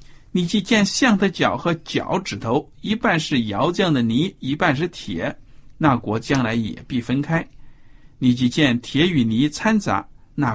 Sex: male